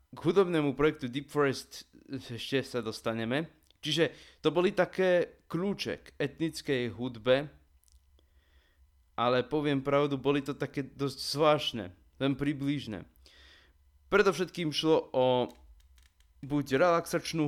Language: Slovak